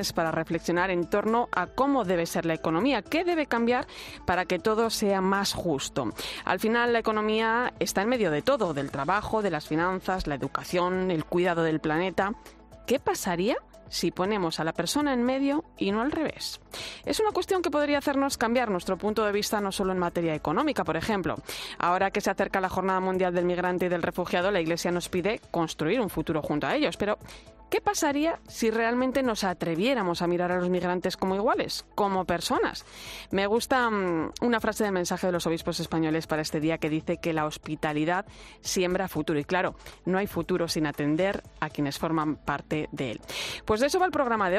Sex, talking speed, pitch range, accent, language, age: female, 200 wpm, 170-225 Hz, Spanish, Spanish, 30-49